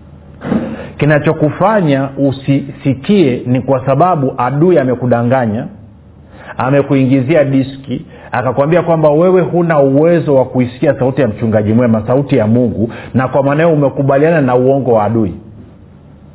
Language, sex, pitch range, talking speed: Swahili, male, 115-155 Hz, 115 wpm